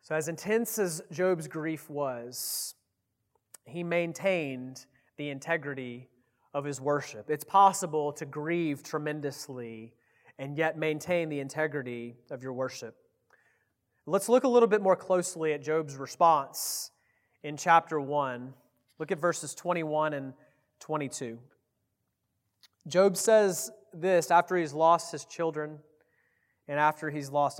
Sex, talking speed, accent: male, 125 wpm, American